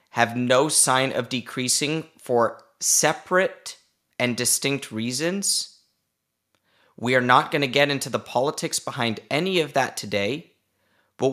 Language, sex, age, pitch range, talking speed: English, male, 30-49, 115-150 Hz, 130 wpm